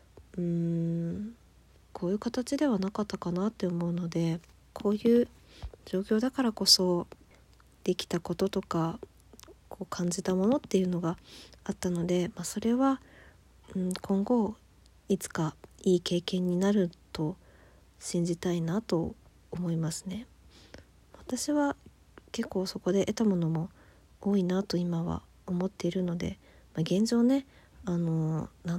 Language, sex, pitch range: Japanese, female, 175-210 Hz